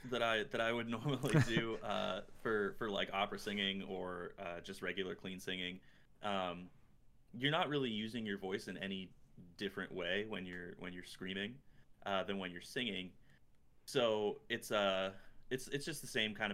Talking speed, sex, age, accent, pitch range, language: 180 wpm, male, 20-39, American, 90-105 Hz, English